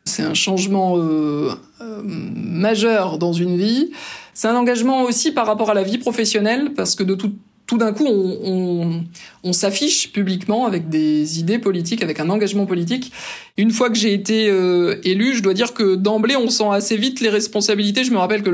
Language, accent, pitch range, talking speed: French, French, 180-220 Hz, 195 wpm